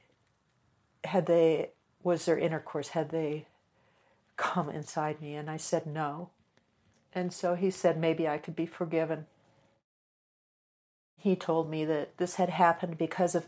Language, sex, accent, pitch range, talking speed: English, female, American, 155-175 Hz, 140 wpm